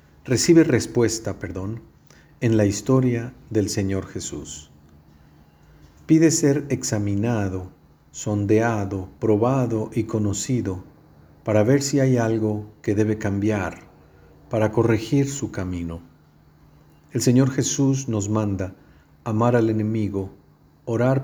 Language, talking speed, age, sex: Spanish, 105 wpm, 50-69, male